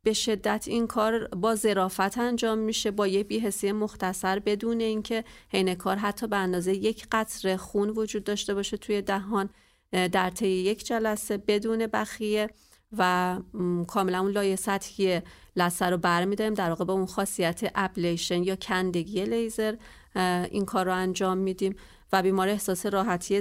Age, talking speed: 30-49, 155 wpm